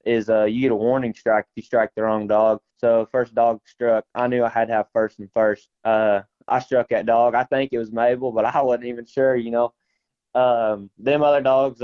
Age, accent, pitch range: 20-39, American, 110-130 Hz